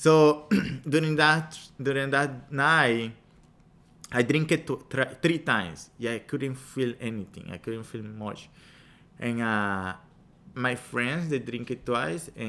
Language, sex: English, male